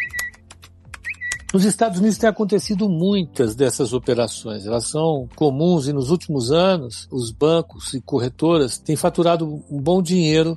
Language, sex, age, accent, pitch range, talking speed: Portuguese, male, 60-79, Brazilian, 130-170 Hz, 135 wpm